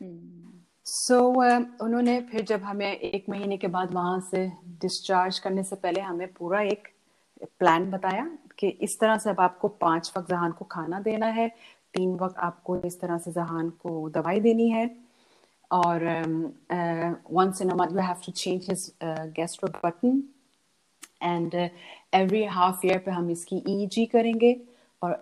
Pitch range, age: 175-220 Hz, 30-49